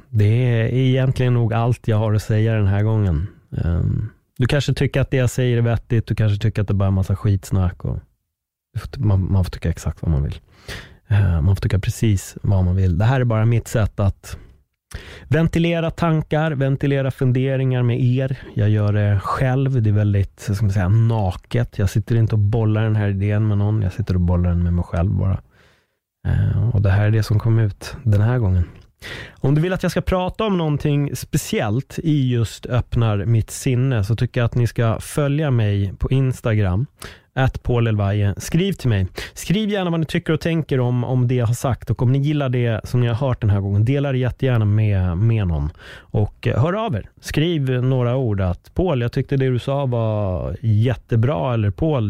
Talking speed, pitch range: 200 wpm, 100-130 Hz